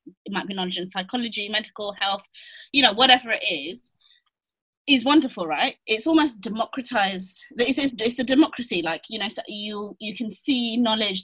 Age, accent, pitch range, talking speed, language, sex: 20-39, British, 195-255 Hz, 165 wpm, English, female